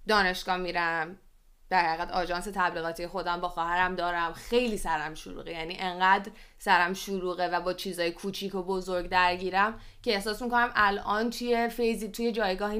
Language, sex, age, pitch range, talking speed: Persian, female, 20-39, 185-240 Hz, 150 wpm